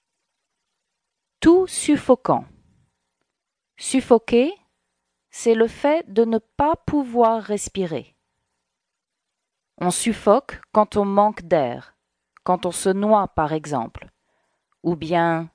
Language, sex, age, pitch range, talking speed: English, female, 40-59, 165-235 Hz, 95 wpm